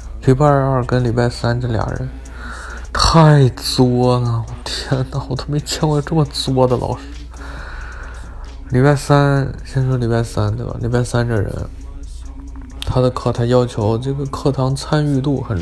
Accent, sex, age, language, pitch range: native, male, 20-39, Chinese, 85-125 Hz